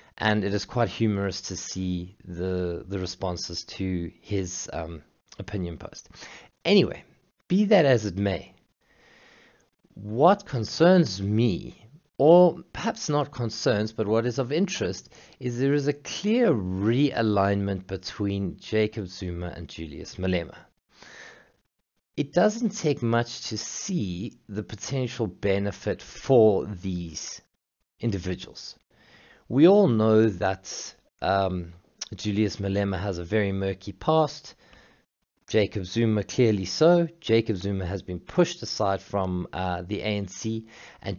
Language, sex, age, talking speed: English, male, 50-69, 120 wpm